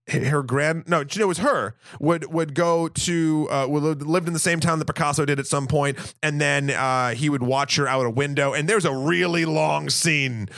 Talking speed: 215 wpm